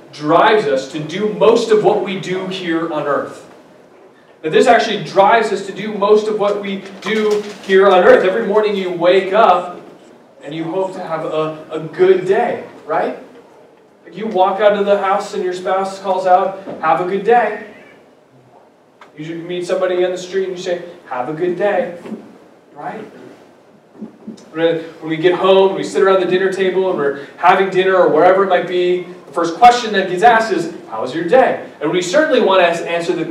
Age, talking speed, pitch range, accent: 30-49, 195 wpm, 170-215 Hz, American